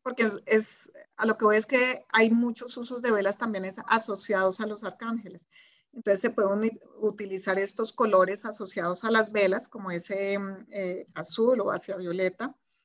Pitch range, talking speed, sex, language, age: 190-225 Hz, 165 wpm, female, Spanish, 30-49